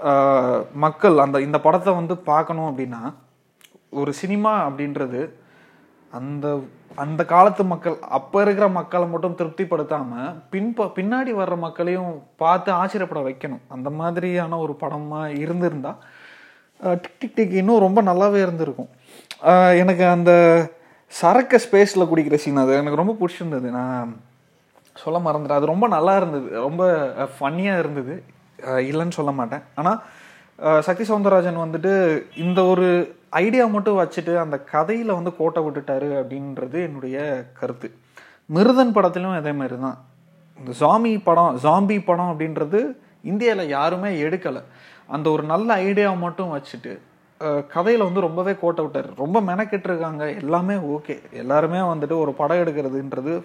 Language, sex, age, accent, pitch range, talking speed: Tamil, male, 30-49, native, 145-190 Hz, 125 wpm